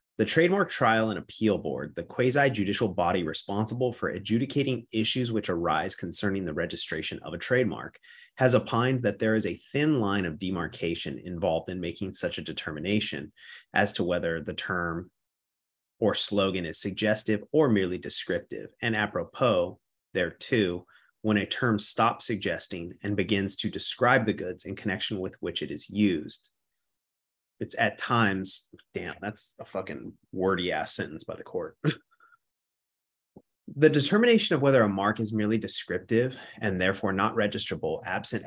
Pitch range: 95-120 Hz